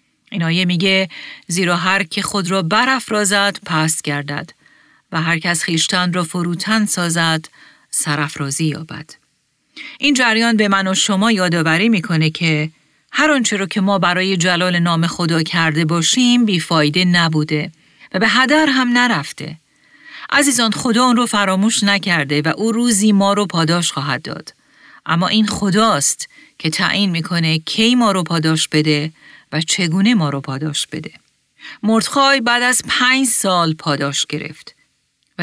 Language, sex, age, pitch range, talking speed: Persian, female, 40-59, 160-205 Hz, 145 wpm